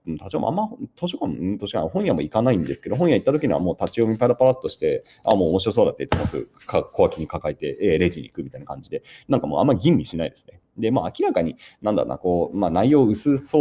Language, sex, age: Japanese, male, 30-49